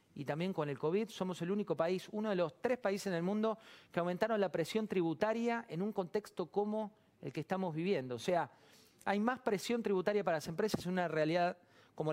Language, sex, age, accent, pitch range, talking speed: Spanish, male, 40-59, Argentinian, 150-210 Hz, 215 wpm